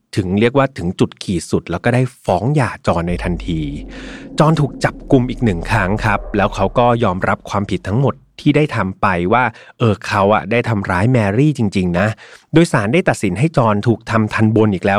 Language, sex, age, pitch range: Thai, male, 30-49, 100-140 Hz